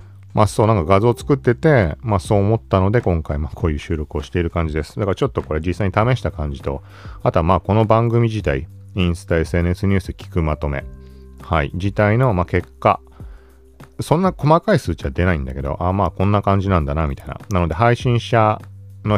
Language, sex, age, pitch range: Japanese, male, 40-59, 80-105 Hz